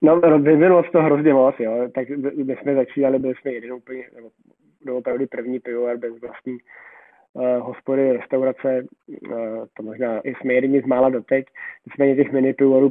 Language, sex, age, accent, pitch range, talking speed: Czech, male, 20-39, native, 125-145 Hz, 165 wpm